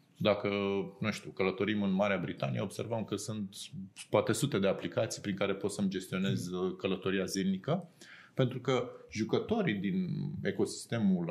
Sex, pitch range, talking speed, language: male, 100-150 Hz, 140 wpm, Romanian